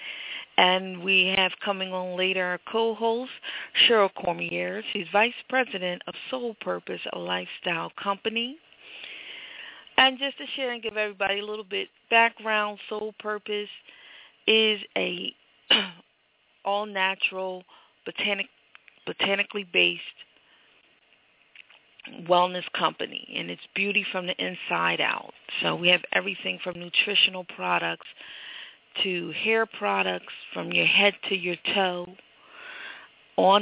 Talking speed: 115 wpm